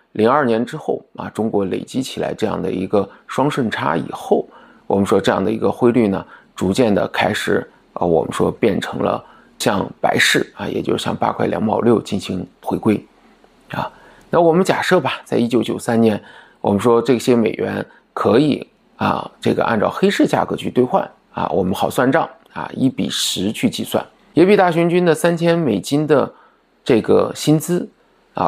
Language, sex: Chinese, male